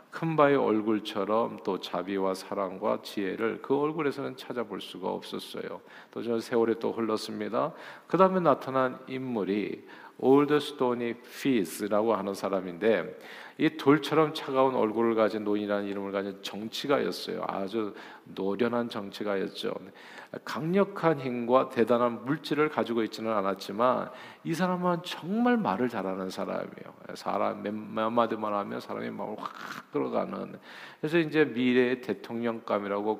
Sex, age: male, 40-59